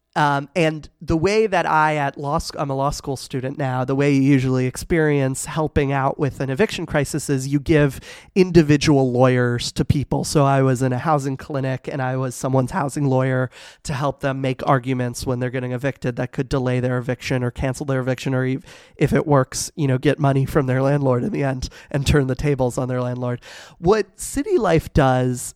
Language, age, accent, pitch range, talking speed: English, 30-49, American, 130-155 Hz, 215 wpm